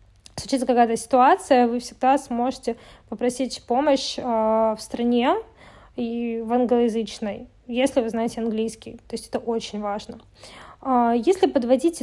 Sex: female